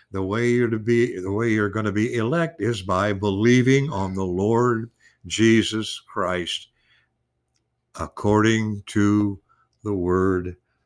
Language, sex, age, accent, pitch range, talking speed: English, male, 60-79, American, 100-130 Hz, 135 wpm